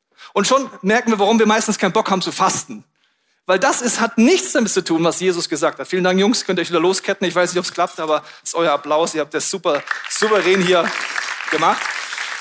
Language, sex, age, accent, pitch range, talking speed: German, male, 40-59, German, 170-220 Hz, 240 wpm